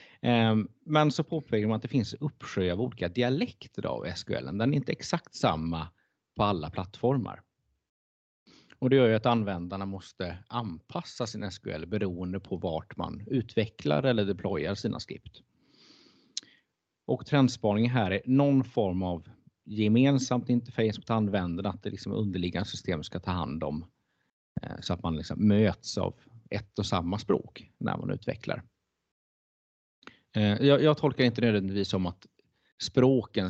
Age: 30-49